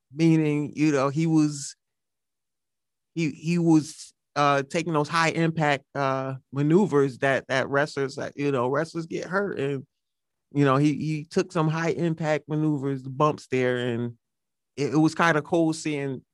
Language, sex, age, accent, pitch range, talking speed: English, male, 30-49, American, 130-155 Hz, 160 wpm